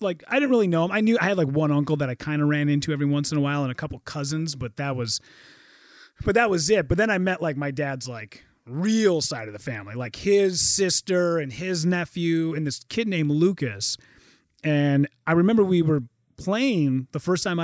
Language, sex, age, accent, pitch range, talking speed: English, male, 30-49, American, 125-170 Hz, 230 wpm